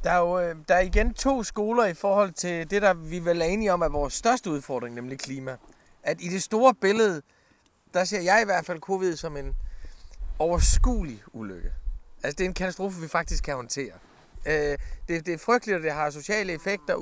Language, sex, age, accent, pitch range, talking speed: Danish, male, 30-49, native, 150-210 Hz, 185 wpm